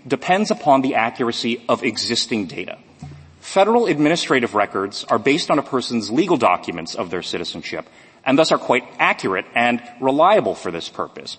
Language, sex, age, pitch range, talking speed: English, male, 40-59, 125-200 Hz, 160 wpm